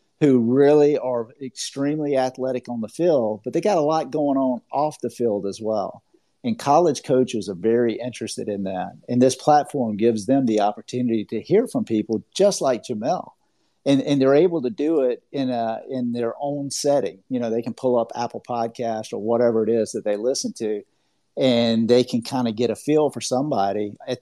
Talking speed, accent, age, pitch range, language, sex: 205 wpm, American, 50-69, 115-140 Hz, English, male